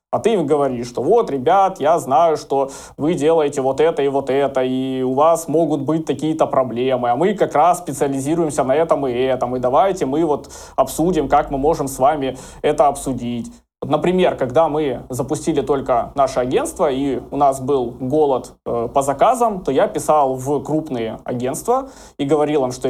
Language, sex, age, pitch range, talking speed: Russian, male, 20-39, 125-155 Hz, 185 wpm